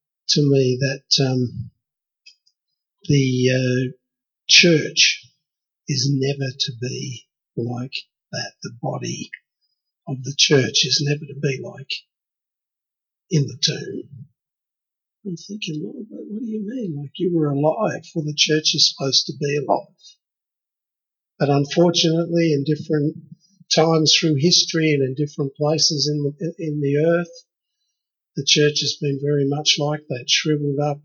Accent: Australian